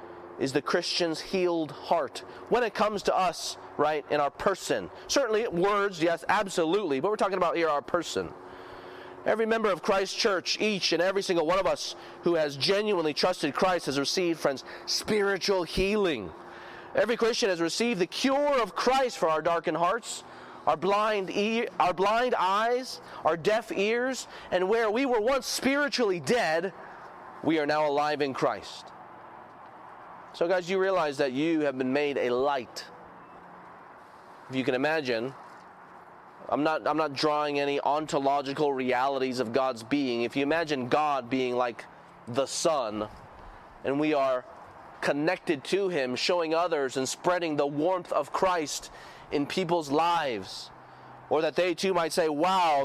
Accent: American